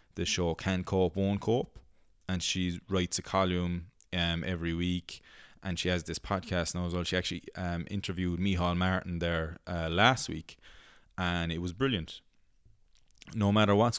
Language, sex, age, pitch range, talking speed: English, male, 20-39, 85-100 Hz, 165 wpm